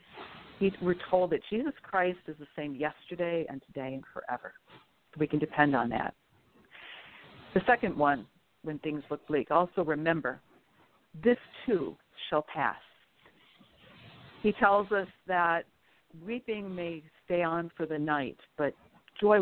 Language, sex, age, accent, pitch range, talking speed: English, female, 50-69, American, 150-190 Hz, 140 wpm